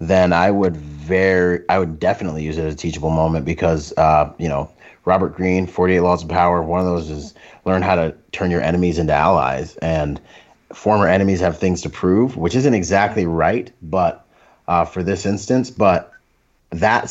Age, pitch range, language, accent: 30-49, 80-100 Hz, English, American